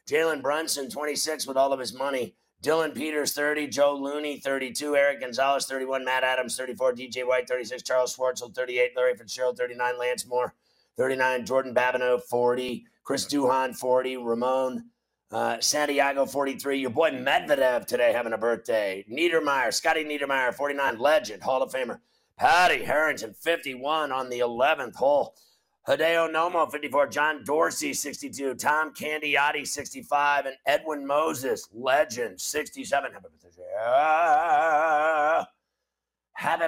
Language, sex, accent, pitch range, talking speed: English, male, American, 130-155 Hz, 130 wpm